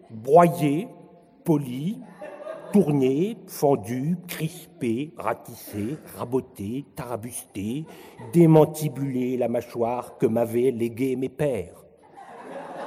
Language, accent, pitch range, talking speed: French, French, 120-180 Hz, 75 wpm